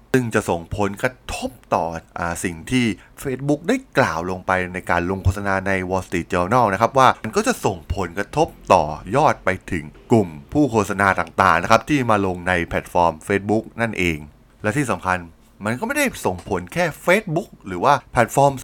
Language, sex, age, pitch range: Thai, male, 20-39, 95-130 Hz